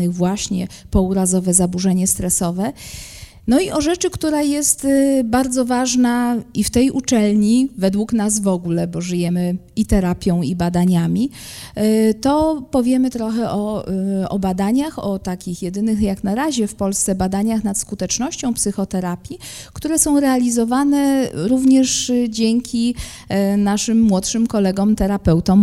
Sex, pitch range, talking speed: female, 180-230 Hz, 125 wpm